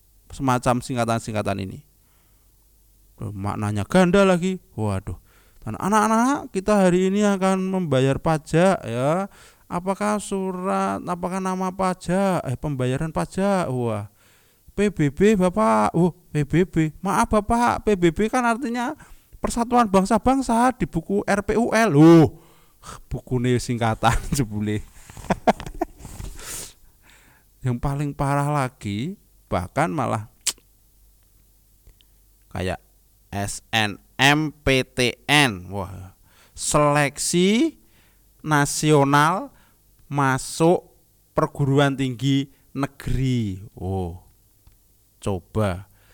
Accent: native